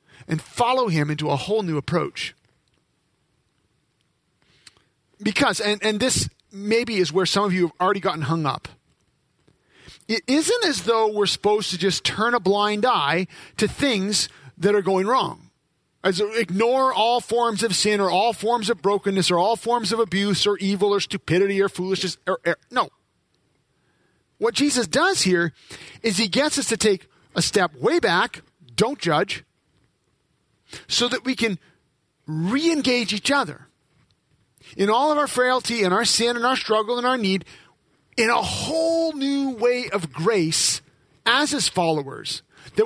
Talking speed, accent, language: 160 wpm, American, English